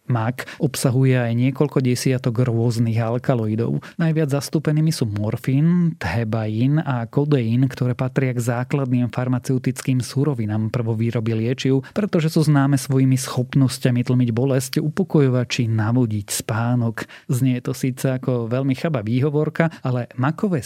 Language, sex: Slovak, male